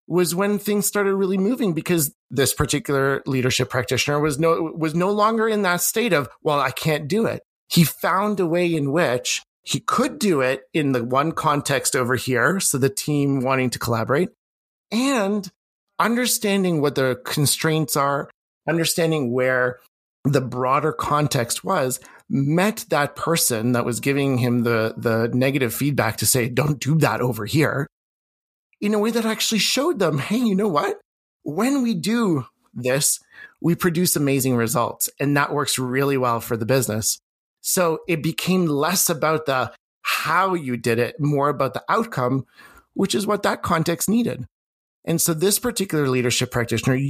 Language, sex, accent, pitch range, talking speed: English, male, American, 130-190 Hz, 165 wpm